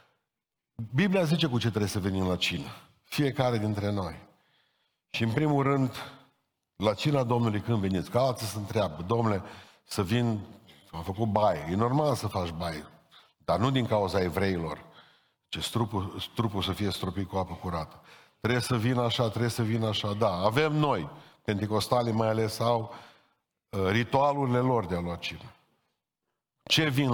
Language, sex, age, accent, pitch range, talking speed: Romanian, male, 50-69, native, 100-135 Hz, 160 wpm